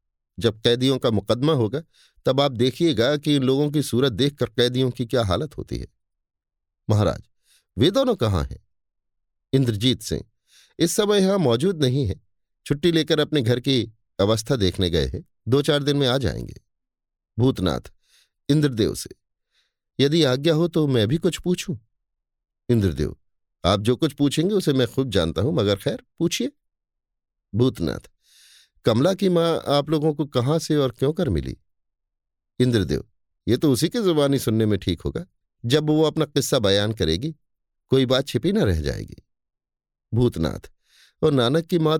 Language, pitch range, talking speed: Hindi, 100-150 Hz, 160 wpm